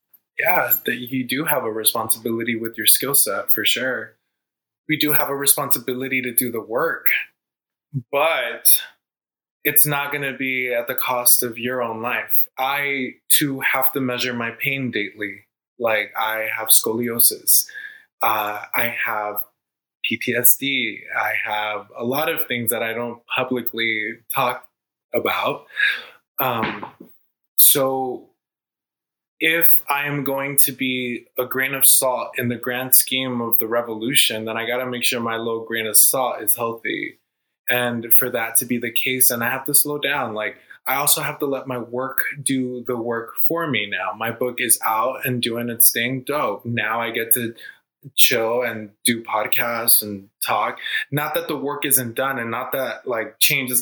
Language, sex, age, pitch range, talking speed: English, male, 20-39, 115-135 Hz, 170 wpm